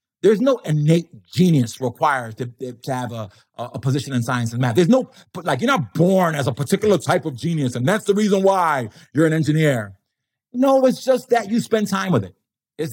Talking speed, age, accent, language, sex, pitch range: 210 wpm, 40-59, American, English, male, 160-210 Hz